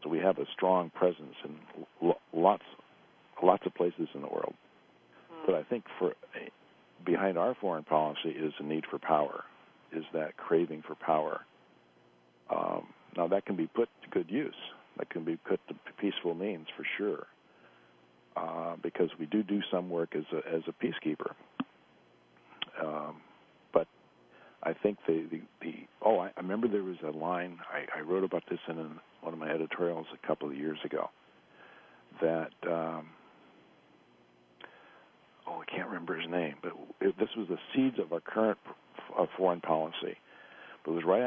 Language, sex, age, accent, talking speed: English, male, 50-69, American, 170 wpm